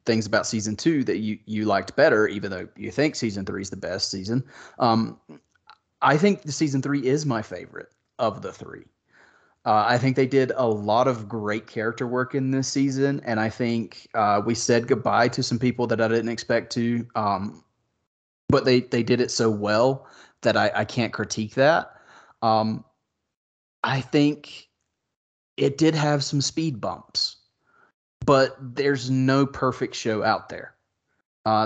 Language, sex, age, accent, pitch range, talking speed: English, male, 30-49, American, 110-135 Hz, 170 wpm